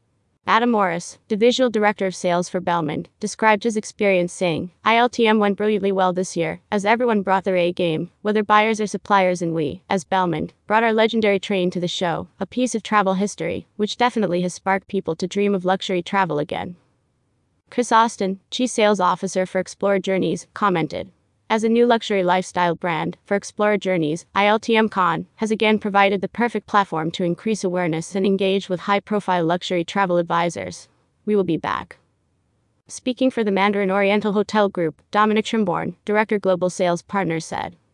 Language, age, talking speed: English, 30-49, 170 wpm